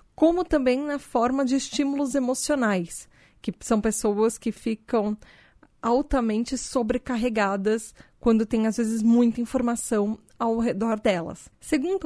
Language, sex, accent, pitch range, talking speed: Portuguese, female, Brazilian, 210-280 Hz, 120 wpm